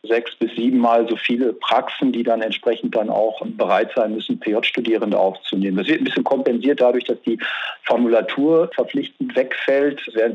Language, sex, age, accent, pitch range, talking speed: German, male, 50-69, German, 110-125 Hz, 170 wpm